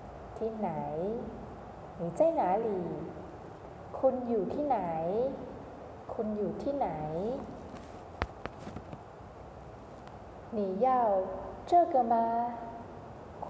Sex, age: female, 20-39